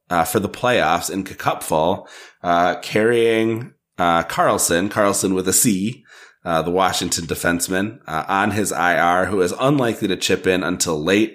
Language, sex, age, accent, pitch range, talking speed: English, male, 30-49, American, 85-105 Hz, 160 wpm